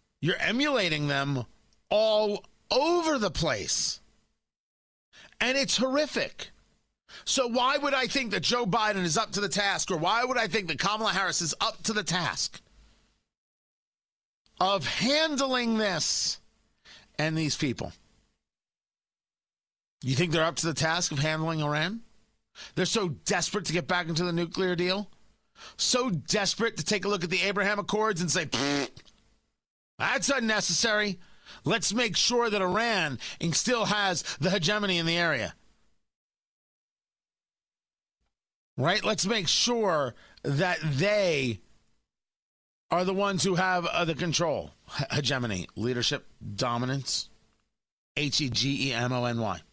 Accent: American